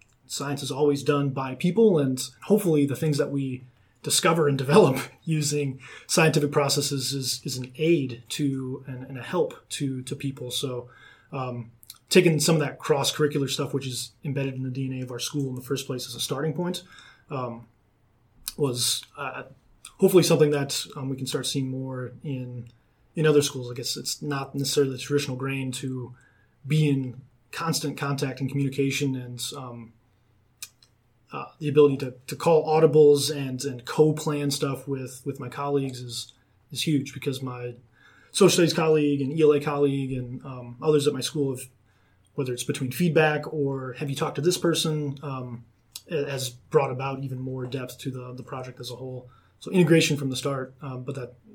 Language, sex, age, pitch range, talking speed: English, male, 20-39, 125-145 Hz, 180 wpm